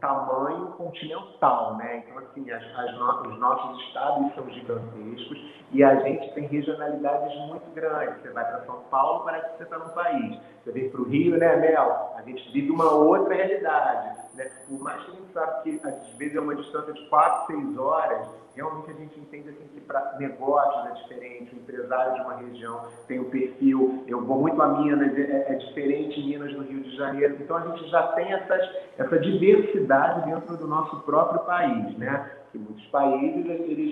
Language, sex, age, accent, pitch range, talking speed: Portuguese, male, 30-49, Brazilian, 135-165 Hz, 190 wpm